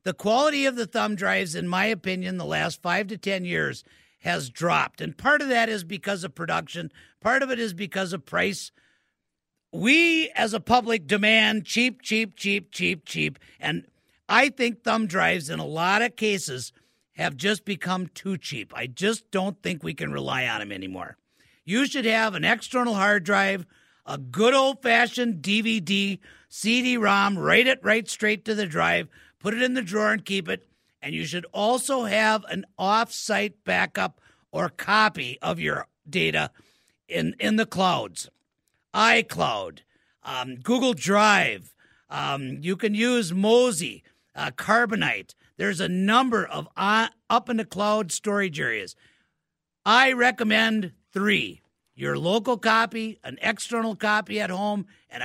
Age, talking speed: 50-69, 155 wpm